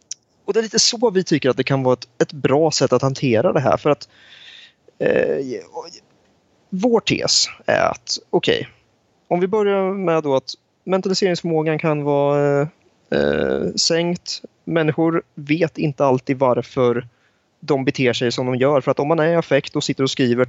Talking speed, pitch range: 175 wpm, 130-185 Hz